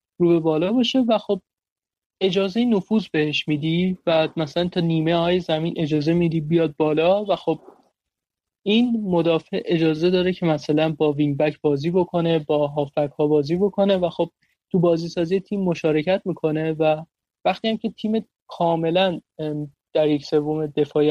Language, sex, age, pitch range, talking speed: Persian, male, 30-49, 155-185 Hz, 155 wpm